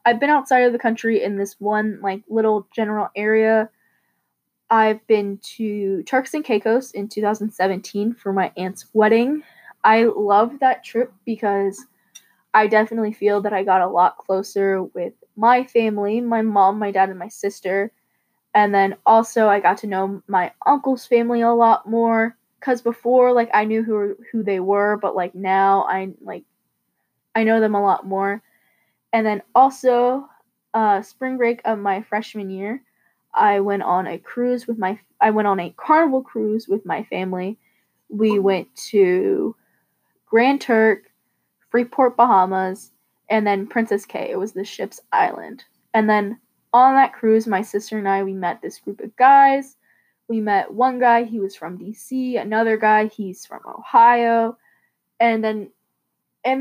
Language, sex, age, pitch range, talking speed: English, female, 10-29, 200-235 Hz, 165 wpm